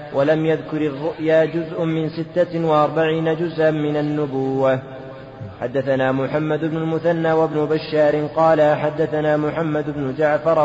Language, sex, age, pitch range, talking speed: Arabic, male, 30-49, 150-160 Hz, 120 wpm